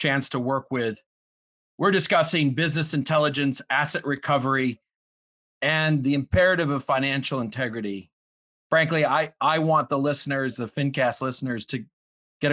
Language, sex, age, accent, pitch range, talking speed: English, male, 40-59, American, 125-145 Hz, 130 wpm